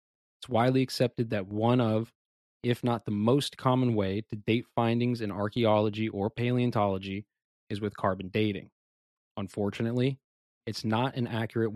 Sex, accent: male, American